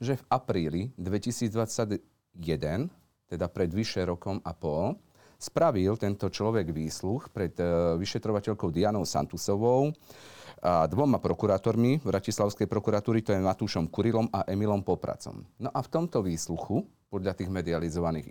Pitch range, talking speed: 90-115 Hz, 130 wpm